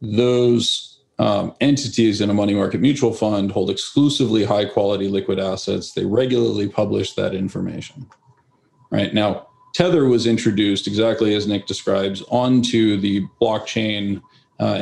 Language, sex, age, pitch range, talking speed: English, male, 40-59, 105-120 Hz, 130 wpm